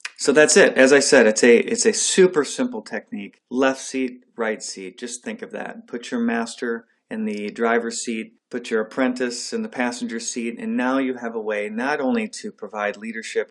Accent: American